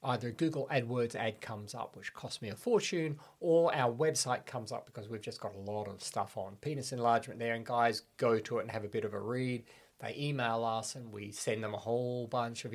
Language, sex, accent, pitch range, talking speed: English, male, Australian, 110-130 Hz, 240 wpm